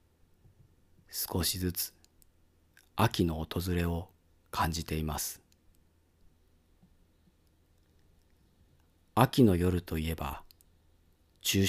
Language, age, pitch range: Japanese, 40-59, 80-95 Hz